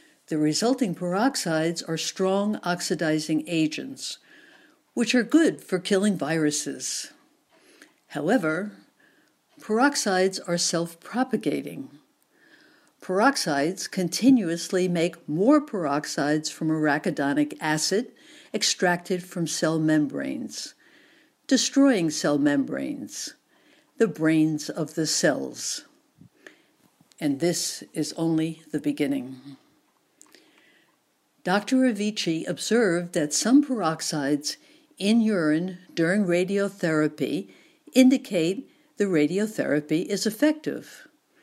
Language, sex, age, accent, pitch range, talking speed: English, female, 60-79, American, 160-255 Hz, 85 wpm